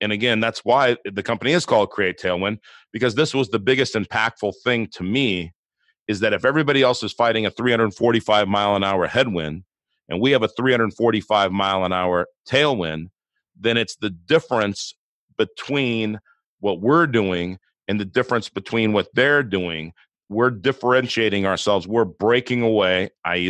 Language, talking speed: English, 160 wpm